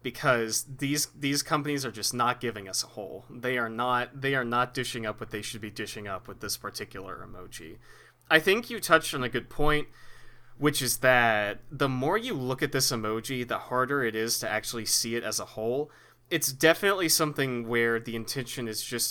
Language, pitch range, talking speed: English, 110-140 Hz, 205 wpm